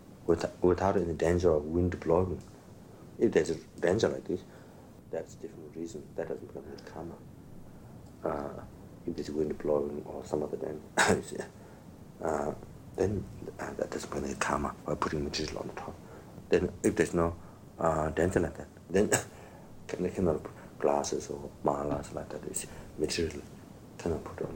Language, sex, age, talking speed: English, male, 60-79, 175 wpm